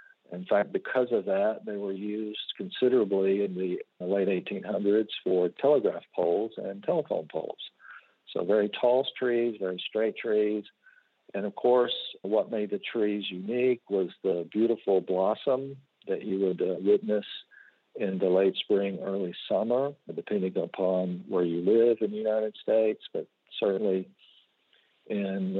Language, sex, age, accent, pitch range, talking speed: English, male, 50-69, American, 95-120 Hz, 145 wpm